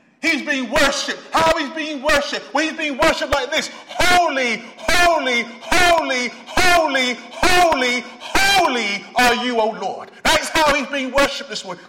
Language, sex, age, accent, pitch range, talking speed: English, male, 30-49, British, 215-285 Hz, 150 wpm